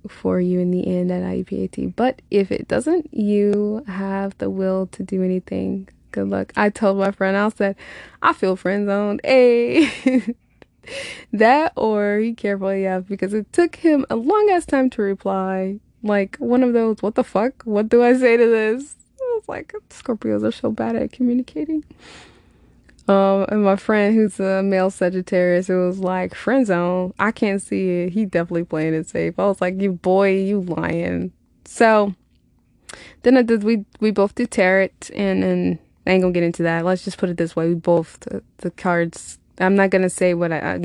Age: 20-39